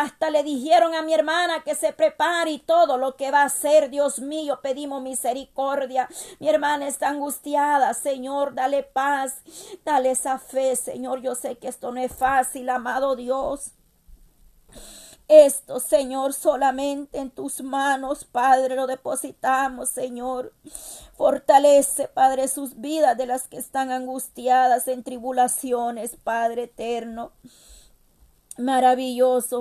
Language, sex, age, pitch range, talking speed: Spanish, female, 40-59, 235-275 Hz, 130 wpm